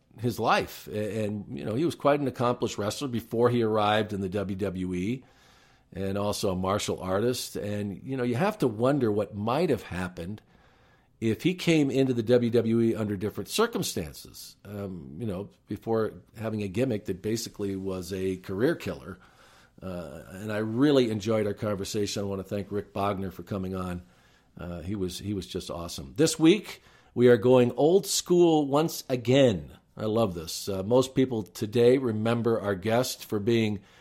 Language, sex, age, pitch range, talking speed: English, male, 50-69, 100-130 Hz, 180 wpm